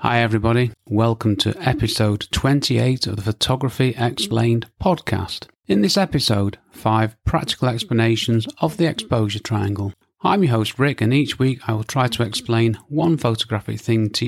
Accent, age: British, 40-59